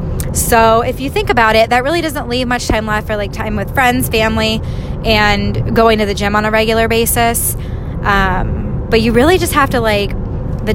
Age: 10-29